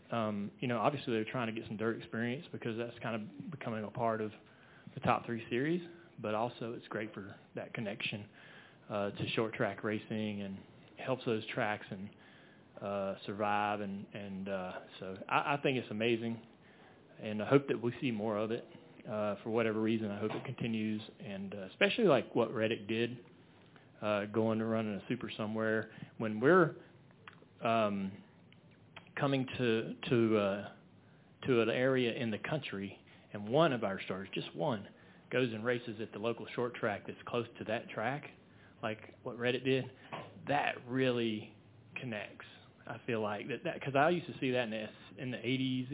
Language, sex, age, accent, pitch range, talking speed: English, male, 30-49, American, 110-130 Hz, 180 wpm